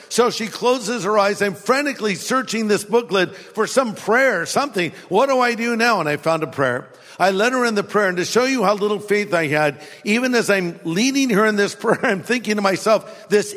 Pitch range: 190-230 Hz